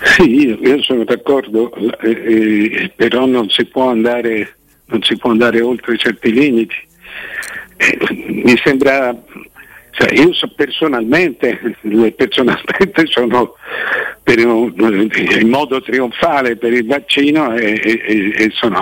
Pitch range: 110-135 Hz